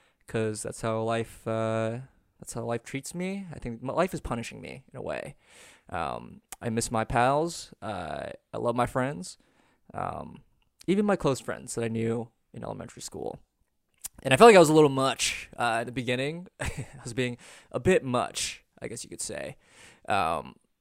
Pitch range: 115-140 Hz